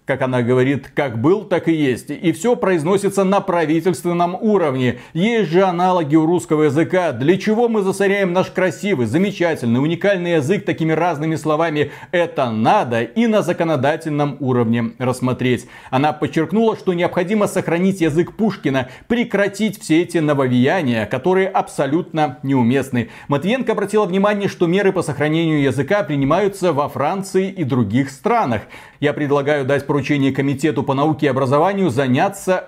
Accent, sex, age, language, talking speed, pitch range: native, male, 30-49, Russian, 140 wpm, 140-195 Hz